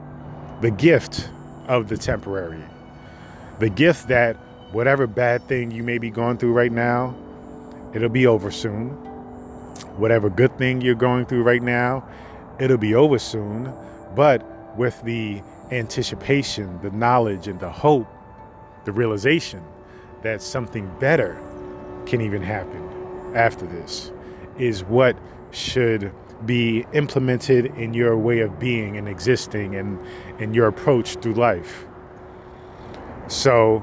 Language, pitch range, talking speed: English, 100-125 Hz, 130 wpm